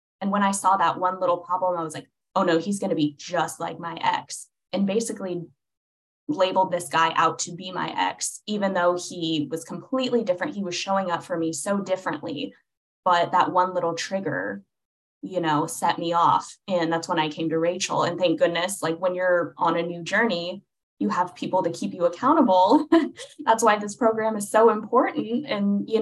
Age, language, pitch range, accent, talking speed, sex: 10-29, English, 170-225 Hz, American, 205 wpm, female